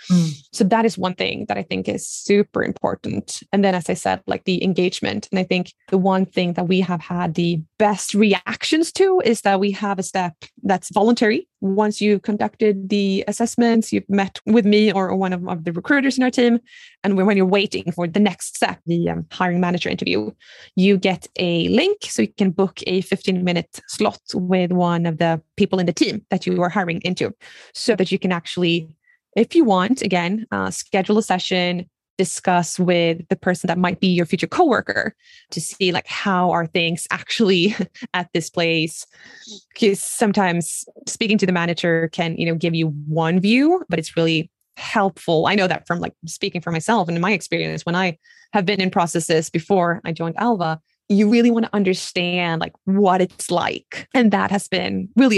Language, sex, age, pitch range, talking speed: English, female, 20-39, 175-210 Hz, 200 wpm